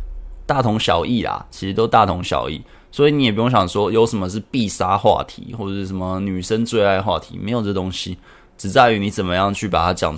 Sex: male